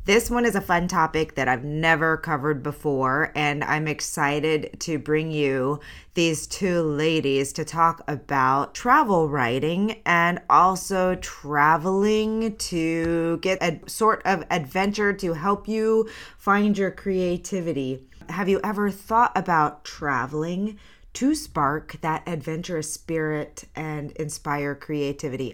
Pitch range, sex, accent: 145-180 Hz, female, American